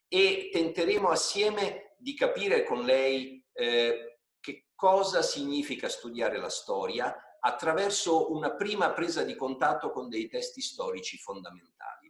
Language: Italian